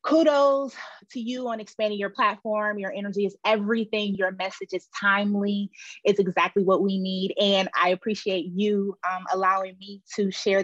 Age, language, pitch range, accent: 30-49, English, 180-220 Hz, American